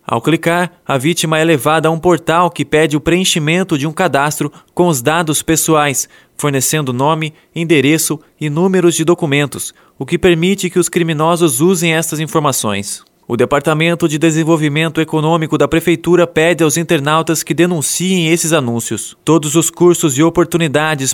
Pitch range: 150-175 Hz